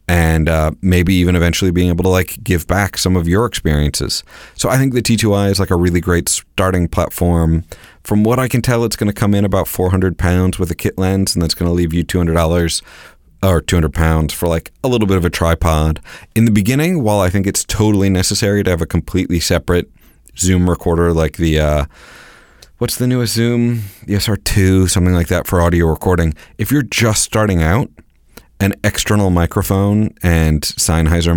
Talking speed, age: 195 wpm, 30-49